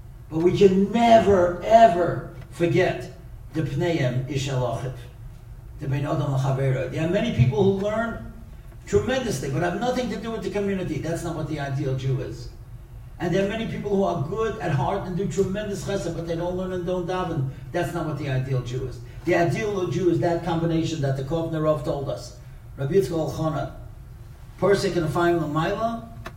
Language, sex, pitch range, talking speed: English, male, 130-180 Hz, 170 wpm